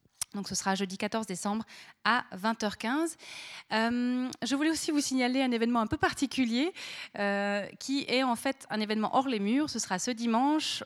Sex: female